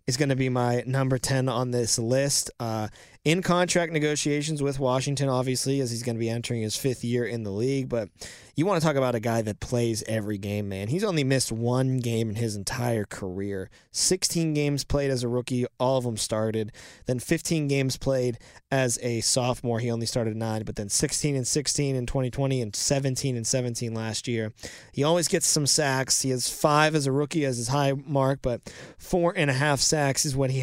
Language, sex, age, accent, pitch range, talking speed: English, male, 20-39, American, 115-135 Hz, 215 wpm